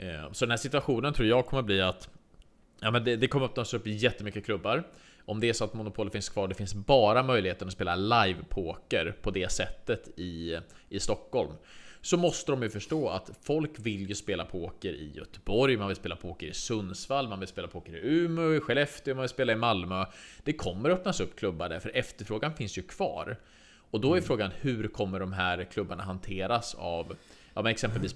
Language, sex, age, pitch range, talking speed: Swedish, male, 20-39, 95-120 Hz, 215 wpm